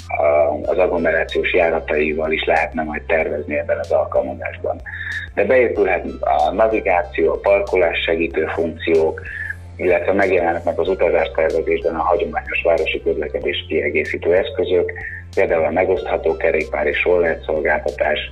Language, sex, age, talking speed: Hungarian, male, 30-49, 110 wpm